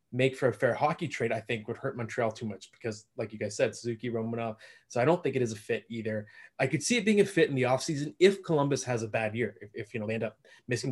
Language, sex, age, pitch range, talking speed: English, male, 20-39, 115-145 Hz, 295 wpm